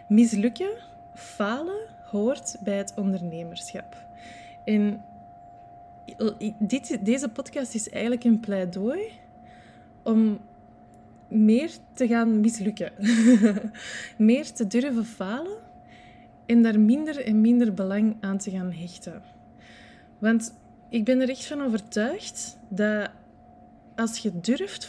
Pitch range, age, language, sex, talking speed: 190-235 Hz, 20-39, Dutch, female, 105 wpm